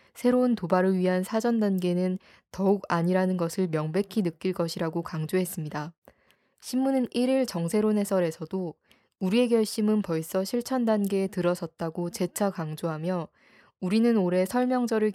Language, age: Korean, 20-39